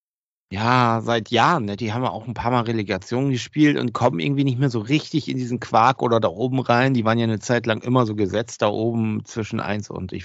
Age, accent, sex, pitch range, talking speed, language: 50-69, German, male, 105-125 Hz, 245 wpm, German